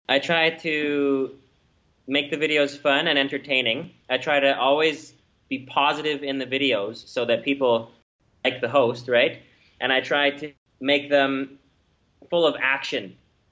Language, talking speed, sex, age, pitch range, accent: English, 150 wpm, male, 20-39, 125-145 Hz, American